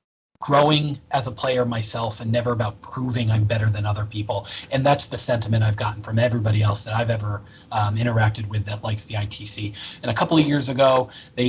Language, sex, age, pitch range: English, male, 30-49, 115-150 Hz